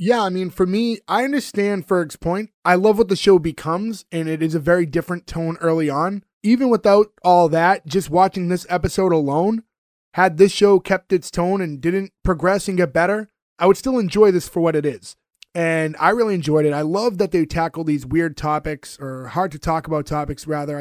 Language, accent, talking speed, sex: English, American, 215 wpm, male